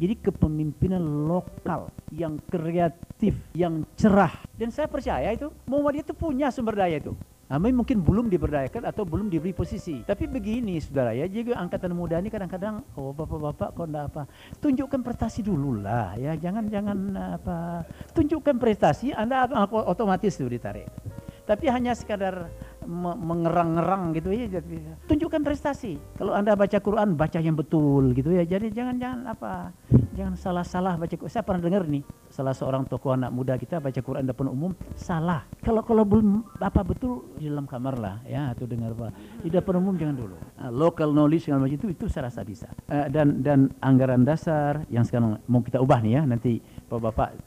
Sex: male